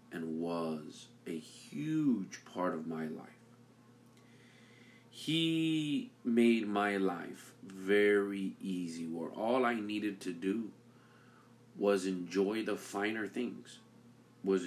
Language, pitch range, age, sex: English, 90-120 Hz, 40-59, male